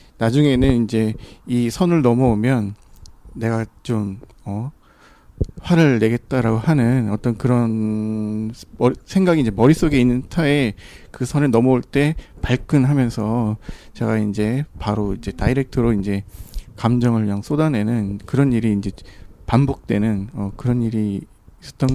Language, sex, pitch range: Korean, male, 105-135 Hz